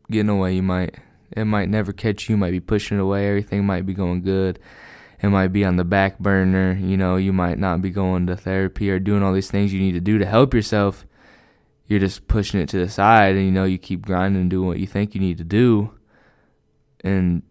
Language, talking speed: English, 245 wpm